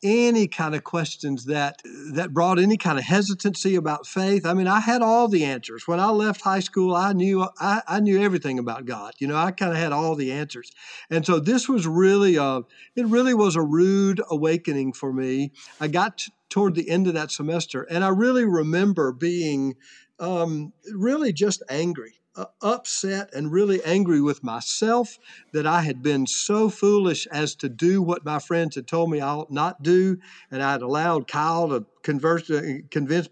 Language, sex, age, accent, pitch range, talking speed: English, male, 50-69, American, 150-200 Hz, 195 wpm